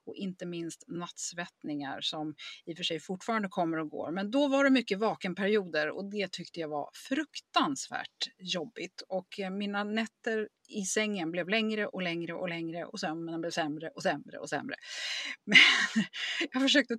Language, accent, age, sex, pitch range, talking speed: Swedish, native, 30-49, female, 165-225 Hz, 170 wpm